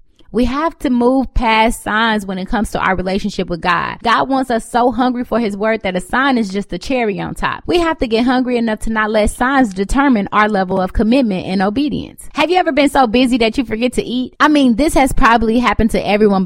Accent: American